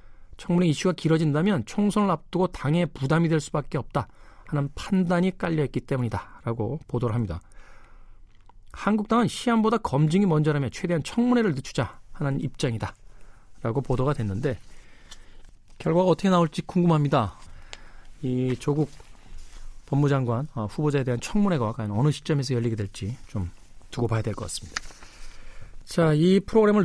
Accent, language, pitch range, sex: native, Korean, 110-170 Hz, male